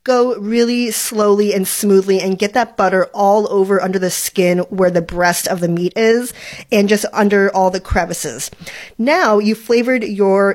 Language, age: English, 30-49